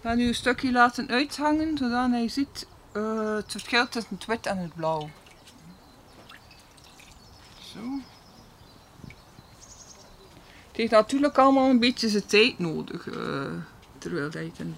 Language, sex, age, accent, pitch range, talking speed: Dutch, female, 50-69, Dutch, 200-265 Hz, 140 wpm